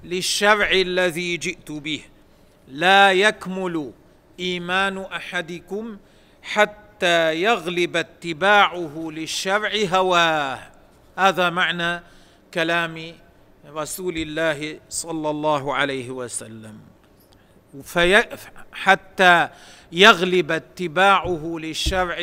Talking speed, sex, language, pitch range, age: 70 wpm, male, Arabic, 160-185 Hz, 50-69